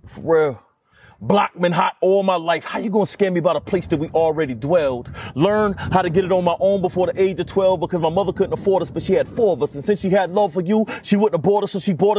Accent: American